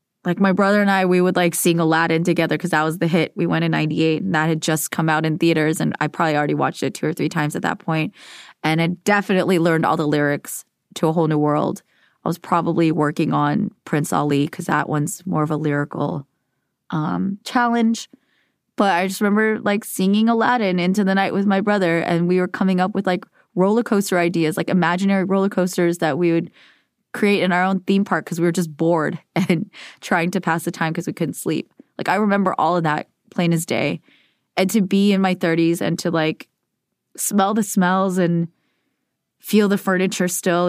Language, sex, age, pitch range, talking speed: English, female, 20-39, 165-195 Hz, 215 wpm